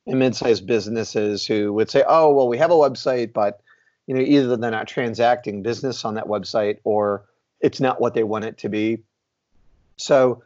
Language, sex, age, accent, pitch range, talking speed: English, male, 40-59, American, 105-125 Hz, 195 wpm